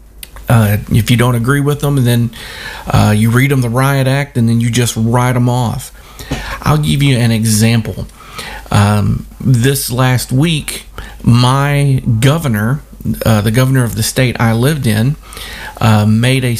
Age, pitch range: 50-69, 115-140 Hz